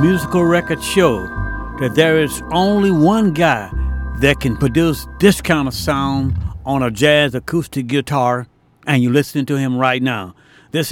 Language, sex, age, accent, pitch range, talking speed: English, male, 60-79, American, 135-170 Hz, 160 wpm